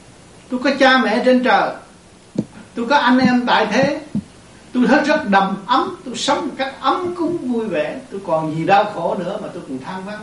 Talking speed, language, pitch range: 210 wpm, Vietnamese, 170-255 Hz